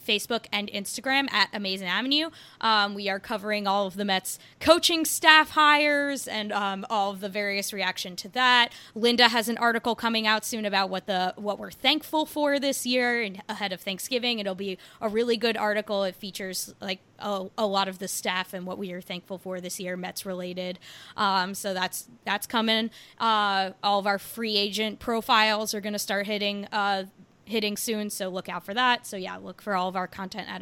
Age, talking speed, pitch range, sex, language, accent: 20-39, 205 wpm, 190-235 Hz, female, English, American